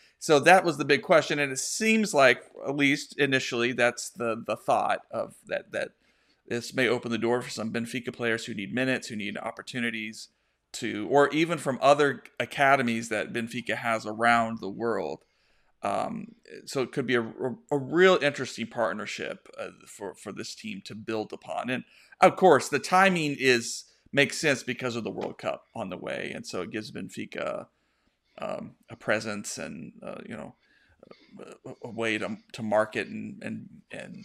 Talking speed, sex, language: 180 wpm, male, English